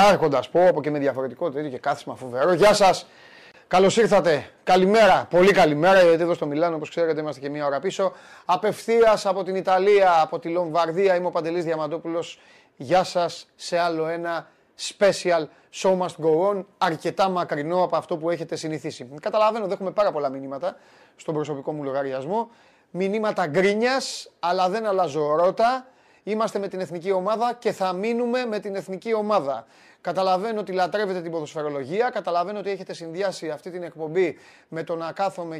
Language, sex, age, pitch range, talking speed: Greek, male, 30-49, 160-195 Hz, 120 wpm